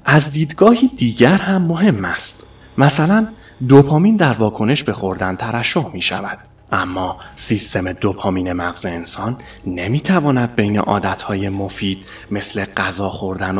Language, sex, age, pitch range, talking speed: Persian, male, 30-49, 95-115 Hz, 120 wpm